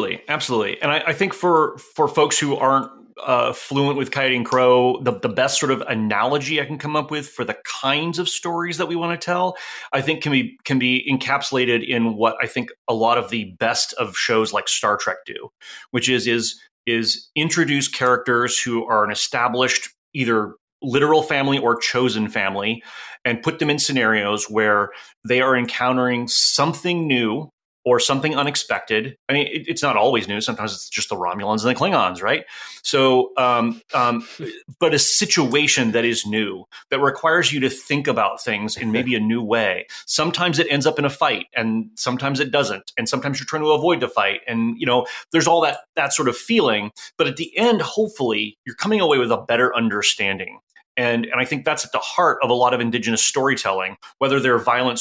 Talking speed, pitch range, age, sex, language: 200 wpm, 120-150 Hz, 30-49, male, English